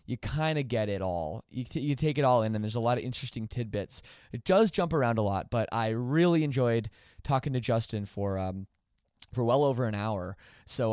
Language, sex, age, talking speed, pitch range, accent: English, male, 20-39, 225 wpm, 105-140 Hz, American